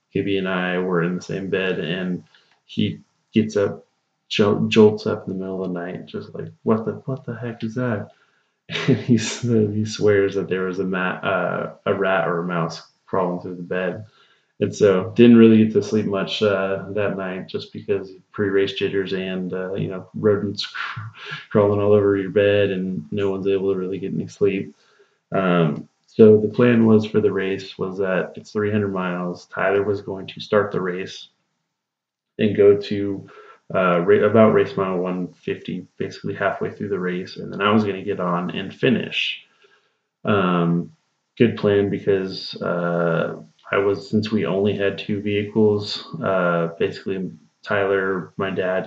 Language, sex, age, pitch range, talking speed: English, male, 20-39, 90-105 Hz, 180 wpm